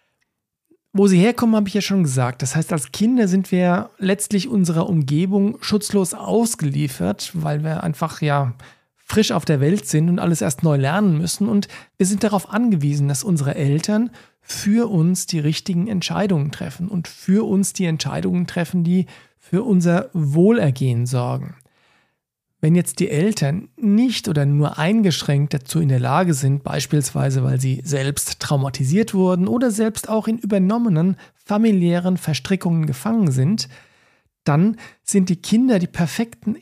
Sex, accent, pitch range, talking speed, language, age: male, German, 150-205 Hz, 150 wpm, German, 40-59